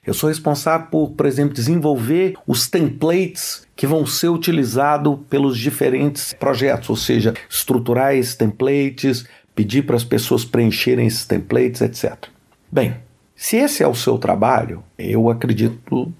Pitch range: 110-140 Hz